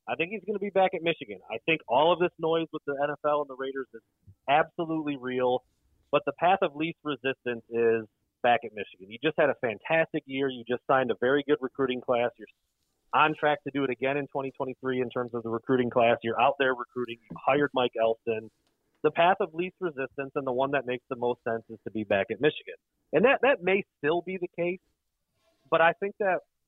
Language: English